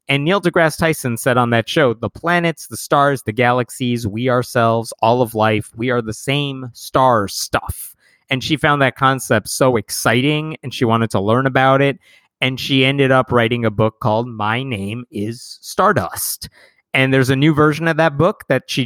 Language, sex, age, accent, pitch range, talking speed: English, male, 30-49, American, 110-140 Hz, 195 wpm